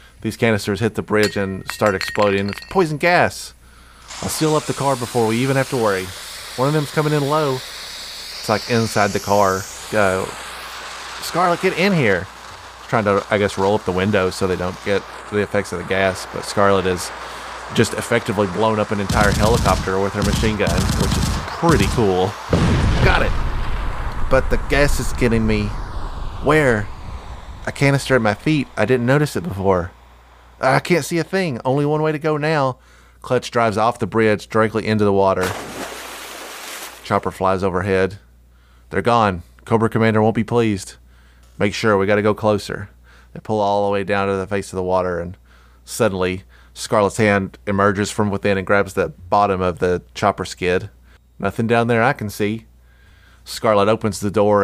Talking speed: 180 wpm